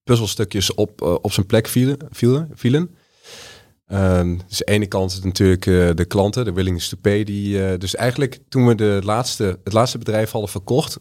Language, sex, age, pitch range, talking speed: Dutch, male, 30-49, 90-110 Hz, 190 wpm